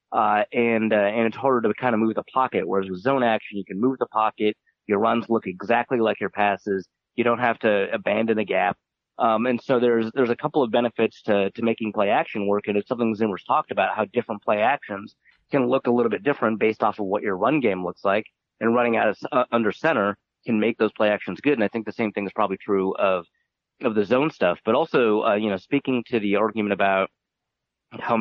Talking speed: 240 wpm